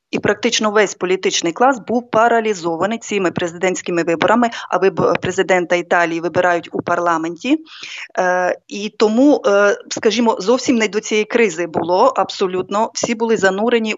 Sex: female